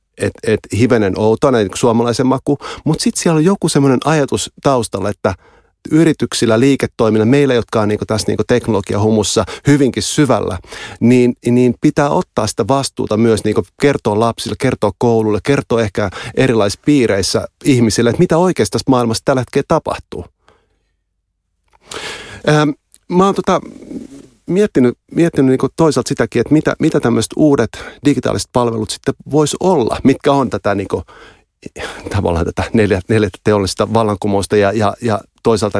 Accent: native